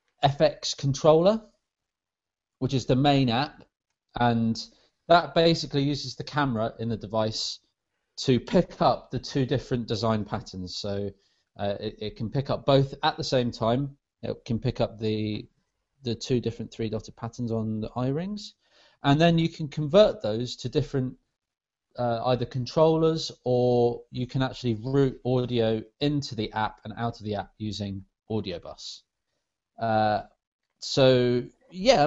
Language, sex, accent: English, male, British